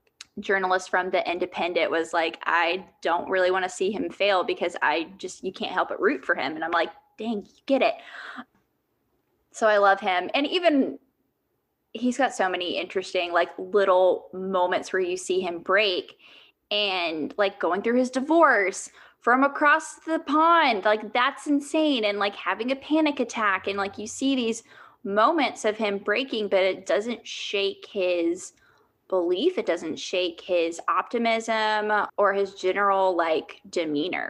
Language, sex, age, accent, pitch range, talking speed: English, female, 10-29, American, 185-290 Hz, 165 wpm